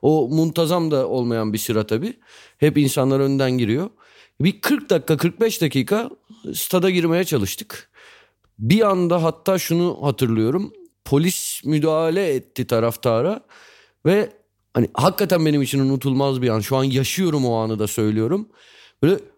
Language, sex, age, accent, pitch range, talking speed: Turkish, male, 30-49, native, 140-210 Hz, 135 wpm